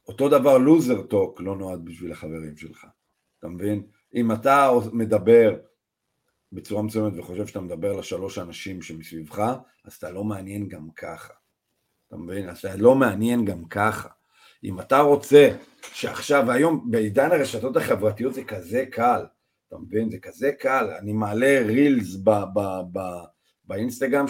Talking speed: 145 wpm